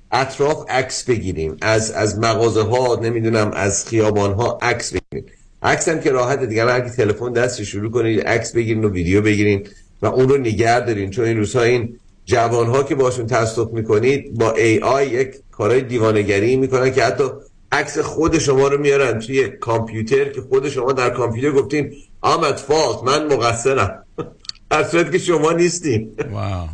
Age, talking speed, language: 50-69, 165 wpm, Persian